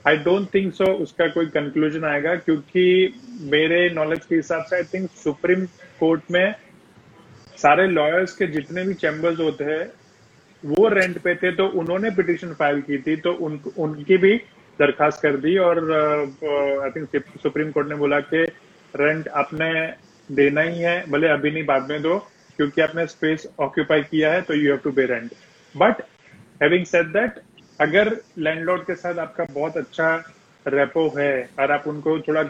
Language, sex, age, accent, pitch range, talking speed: Hindi, male, 30-49, native, 150-180 Hz, 165 wpm